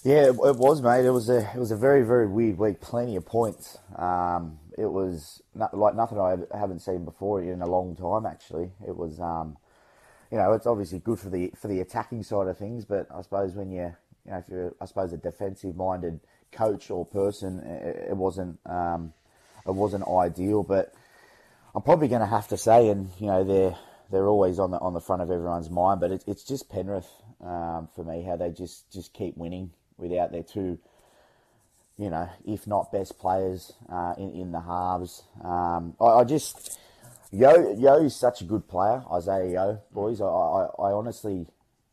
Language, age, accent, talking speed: English, 20-39, Australian, 200 wpm